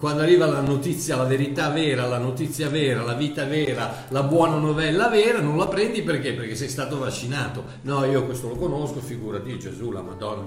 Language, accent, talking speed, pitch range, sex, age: Italian, native, 200 wpm, 125-175 Hz, male, 60-79